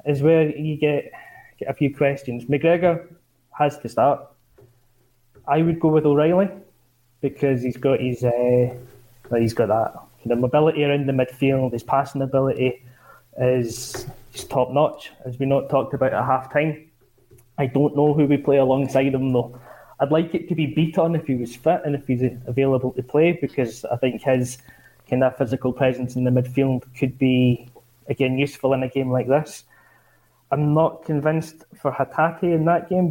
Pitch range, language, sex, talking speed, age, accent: 125-145 Hz, English, male, 175 wpm, 20-39, British